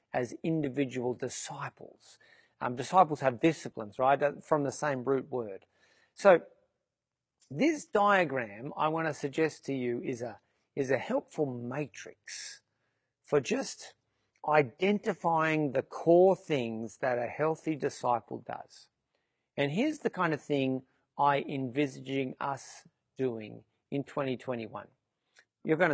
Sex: male